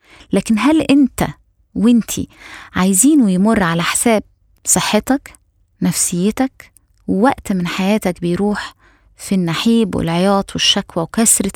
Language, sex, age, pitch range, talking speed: Arabic, female, 20-39, 190-240 Hz, 100 wpm